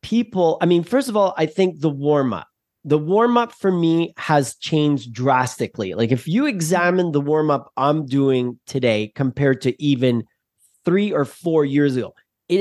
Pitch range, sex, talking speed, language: 130-195 Hz, male, 180 wpm, English